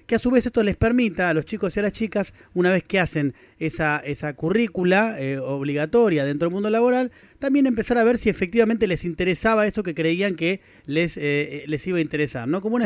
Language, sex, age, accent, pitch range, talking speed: Spanish, male, 30-49, Argentinian, 145-190 Hz, 225 wpm